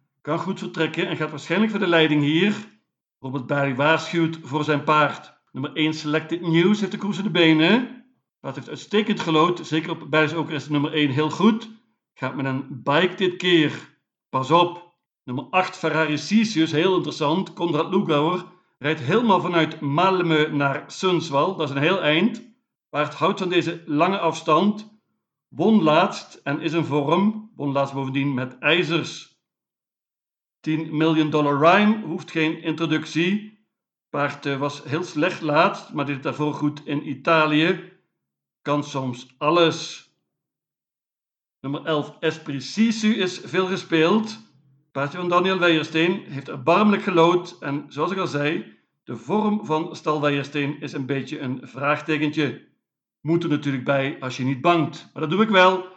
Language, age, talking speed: Dutch, 60-79, 150 wpm